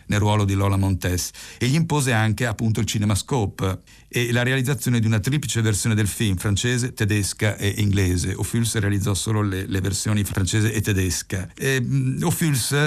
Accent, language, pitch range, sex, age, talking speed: native, Italian, 100-120 Hz, male, 50-69, 165 wpm